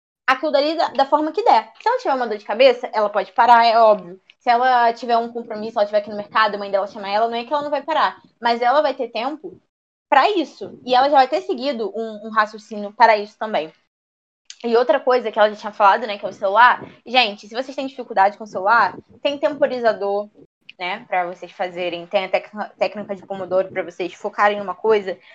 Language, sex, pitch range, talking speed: Portuguese, female, 210-275 Hz, 235 wpm